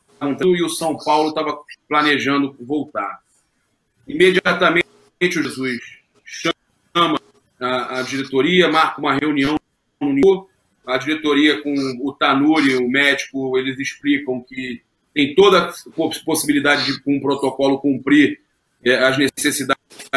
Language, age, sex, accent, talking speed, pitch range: Portuguese, 30-49, male, Brazilian, 110 wpm, 135-180 Hz